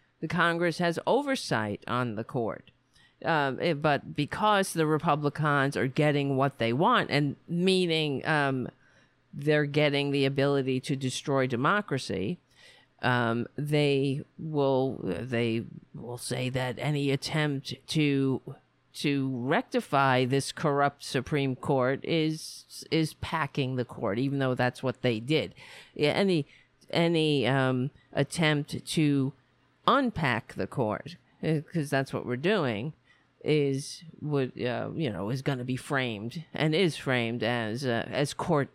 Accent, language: American, English